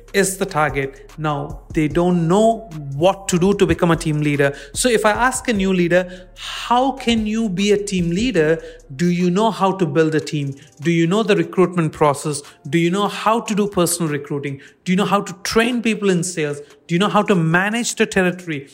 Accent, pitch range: Indian, 155-190 Hz